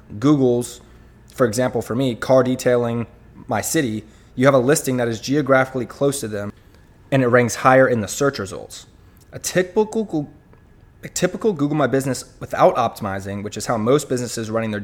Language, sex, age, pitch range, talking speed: English, male, 20-39, 110-135 Hz, 175 wpm